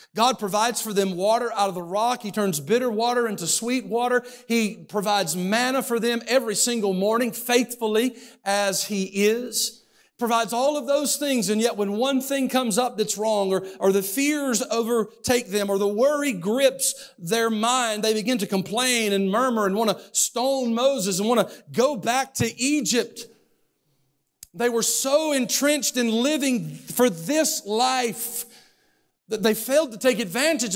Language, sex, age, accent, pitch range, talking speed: English, male, 50-69, American, 200-250 Hz, 170 wpm